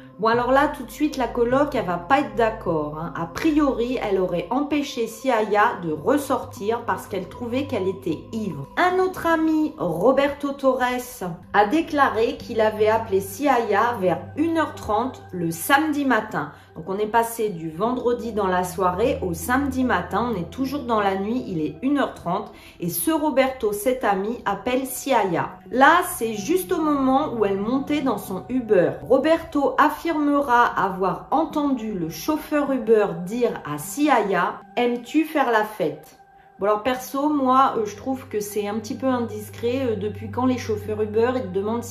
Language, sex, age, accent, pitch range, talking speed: French, female, 40-59, French, 200-270 Hz, 170 wpm